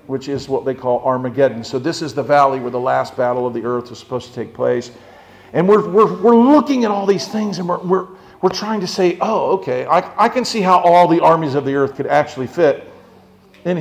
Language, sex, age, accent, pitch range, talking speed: English, male, 50-69, American, 140-190 Hz, 245 wpm